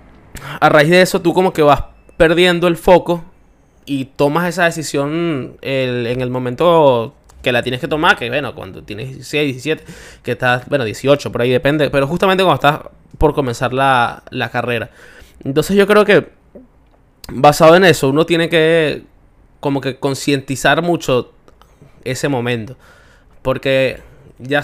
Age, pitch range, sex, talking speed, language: 20-39, 130-160 Hz, male, 155 wpm, Spanish